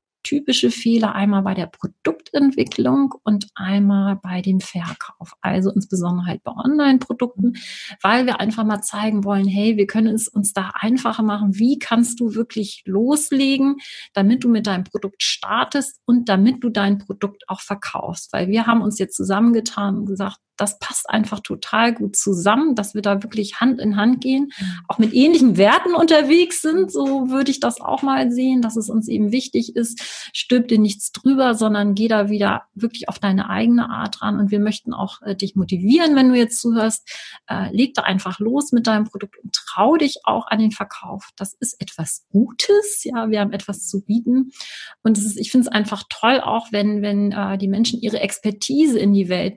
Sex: female